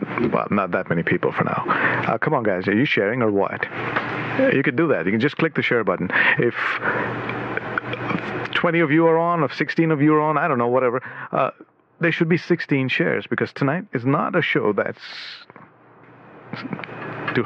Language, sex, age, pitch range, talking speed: English, male, 50-69, 110-140 Hz, 195 wpm